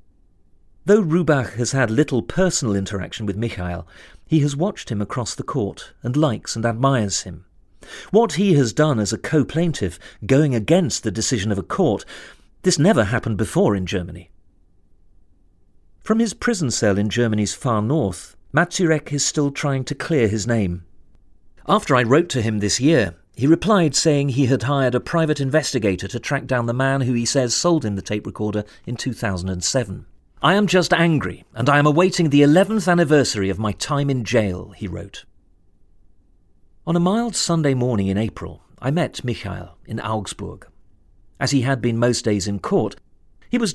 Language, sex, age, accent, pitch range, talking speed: English, male, 40-59, British, 95-145 Hz, 175 wpm